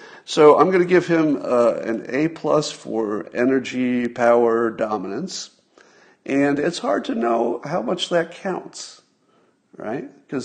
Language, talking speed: English, 140 wpm